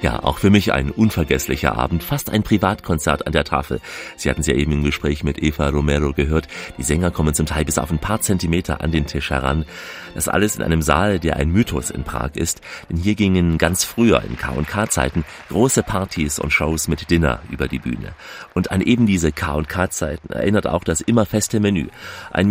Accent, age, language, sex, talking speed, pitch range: German, 40-59, German, male, 205 wpm, 75-95 Hz